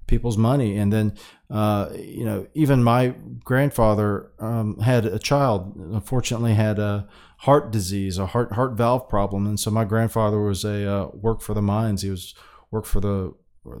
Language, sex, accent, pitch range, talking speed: English, male, American, 105-130 Hz, 180 wpm